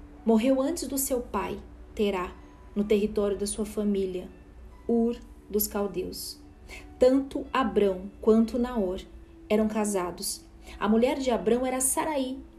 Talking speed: 125 wpm